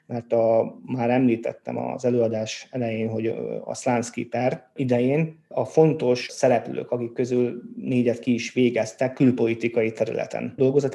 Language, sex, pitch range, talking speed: Hungarian, male, 115-125 Hz, 130 wpm